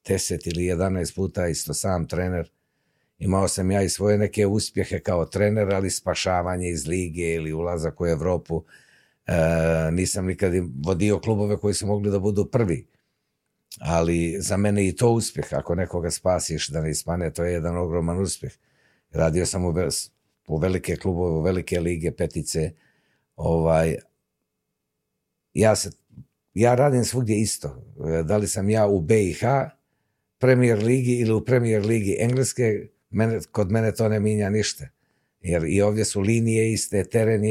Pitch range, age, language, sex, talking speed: 85-110 Hz, 50-69, Croatian, male, 150 wpm